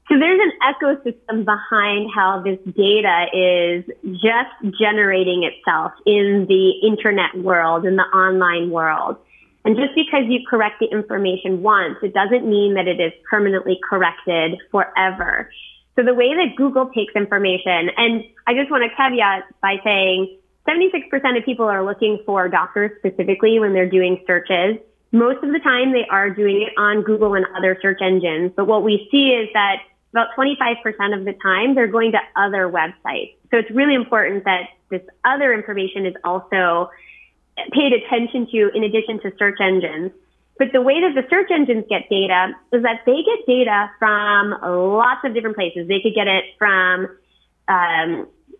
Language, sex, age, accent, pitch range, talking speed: English, female, 20-39, American, 190-240 Hz, 170 wpm